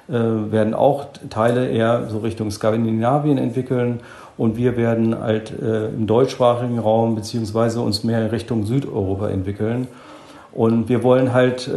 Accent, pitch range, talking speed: German, 115-130 Hz, 130 wpm